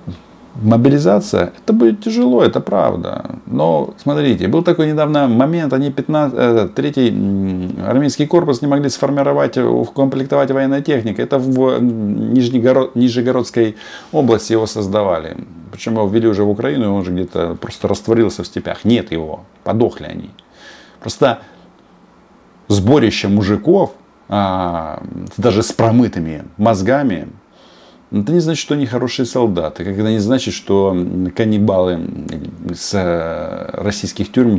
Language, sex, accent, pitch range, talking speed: Russian, male, native, 95-130 Hz, 120 wpm